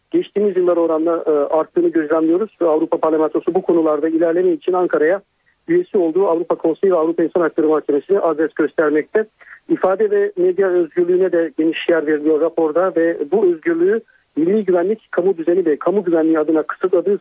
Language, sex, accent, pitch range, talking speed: Turkish, male, native, 160-220 Hz, 155 wpm